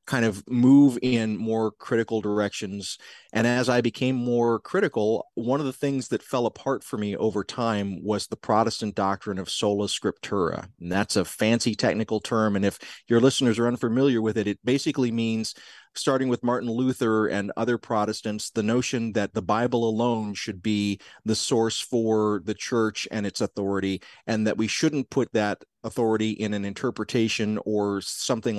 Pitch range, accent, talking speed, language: 105-120 Hz, American, 175 wpm, English